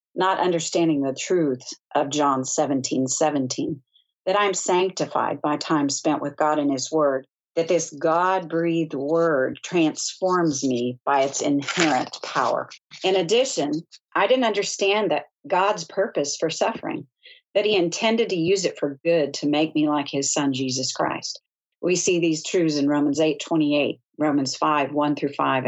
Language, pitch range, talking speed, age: English, 140-185 Hz, 160 wpm, 50-69